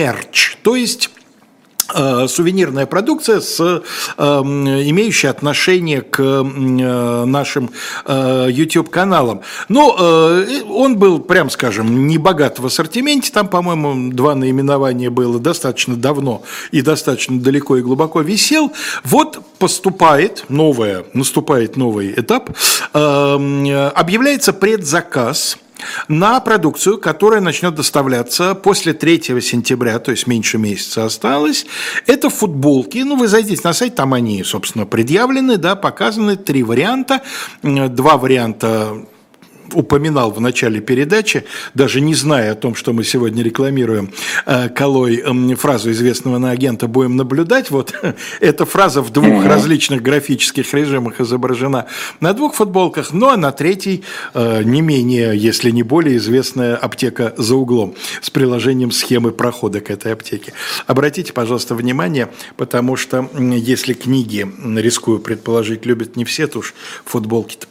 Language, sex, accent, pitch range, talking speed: Russian, male, native, 120-170 Hz, 125 wpm